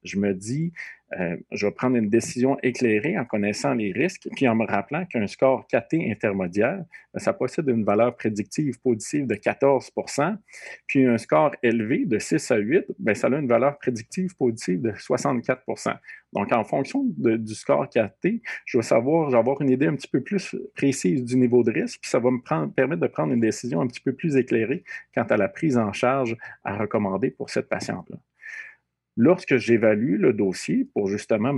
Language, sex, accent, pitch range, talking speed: French, male, Canadian, 110-155 Hz, 190 wpm